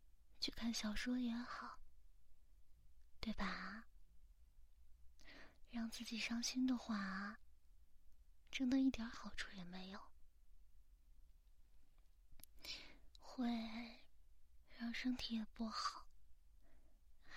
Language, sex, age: Chinese, female, 20-39